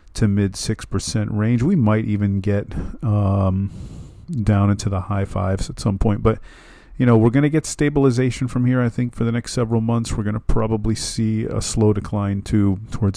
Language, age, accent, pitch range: English, 40-59, American, 95-115 Hz